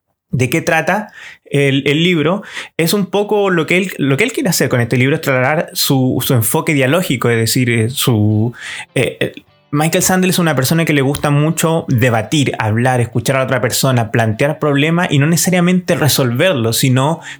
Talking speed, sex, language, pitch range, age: 170 wpm, male, Spanish, 120-155 Hz, 30-49